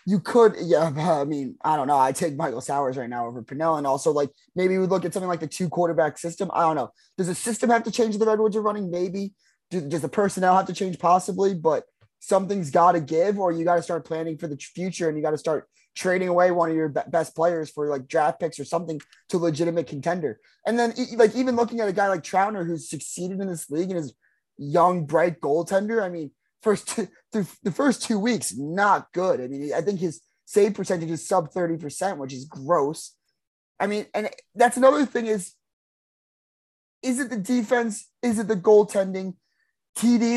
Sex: male